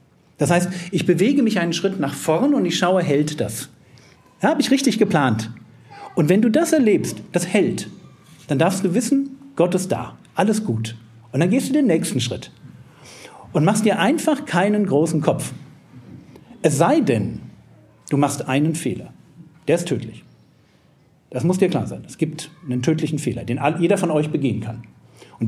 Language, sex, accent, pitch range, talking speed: German, male, German, 135-215 Hz, 180 wpm